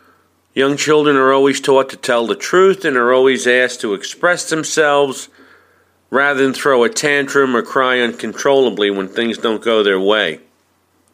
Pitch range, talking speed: 115-145 Hz, 160 wpm